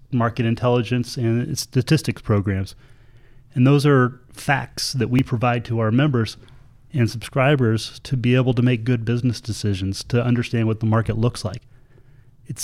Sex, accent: male, American